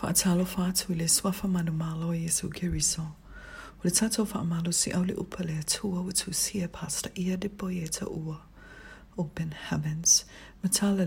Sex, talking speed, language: female, 155 wpm, English